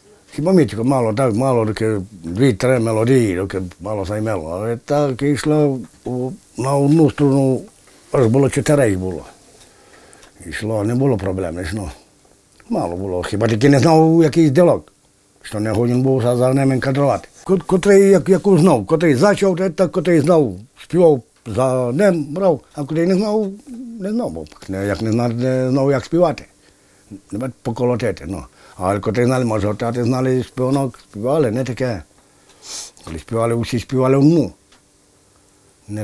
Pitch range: 100-140 Hz